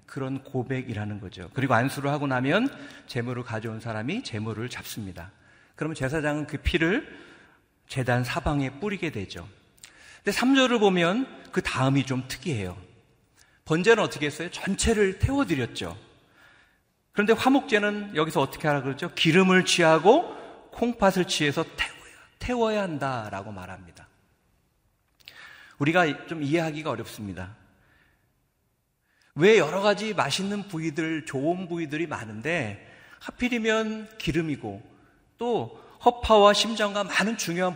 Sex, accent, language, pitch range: male, native, Korean, 125-195 Hz